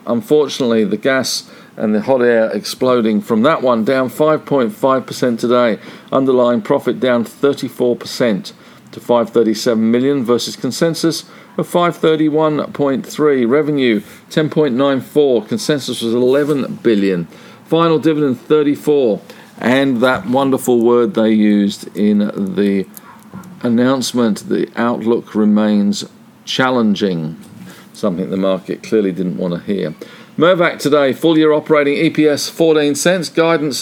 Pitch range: 120-155 Hz